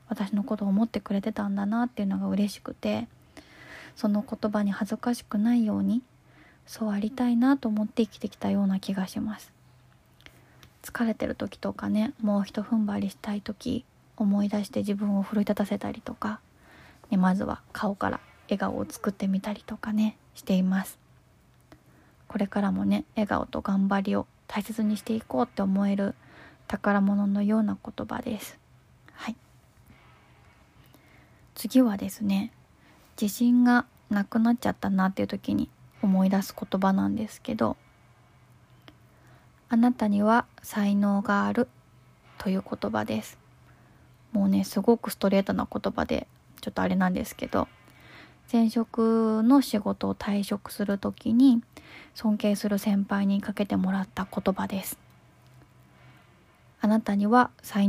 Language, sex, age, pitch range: Japanese, female, 20-39, 200-225 Hz